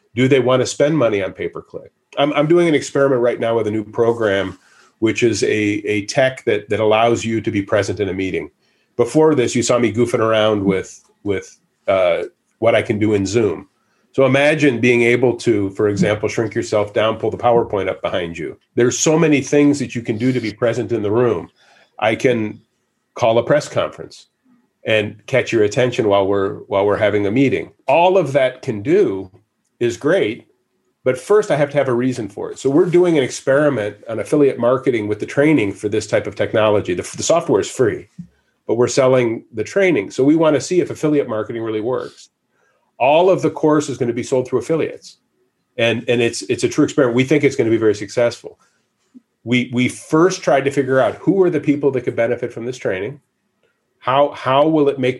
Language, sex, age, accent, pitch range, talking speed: English, male, 40-59, American, 110-145 Hz, 215 wpm